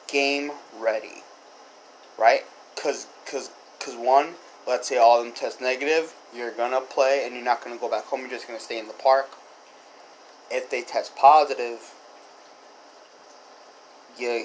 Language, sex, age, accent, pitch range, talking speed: English, male, 20-39, American, 120-145 Hz, 150 wpm